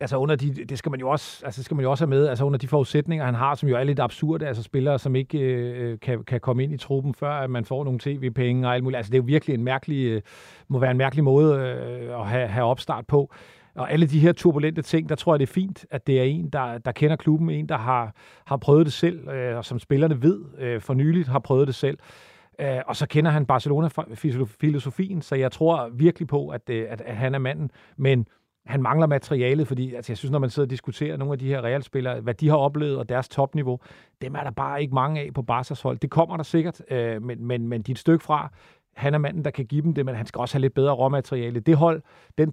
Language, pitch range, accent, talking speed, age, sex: Danish, 130-150 Hz, native, 255 wpm, 40-59, male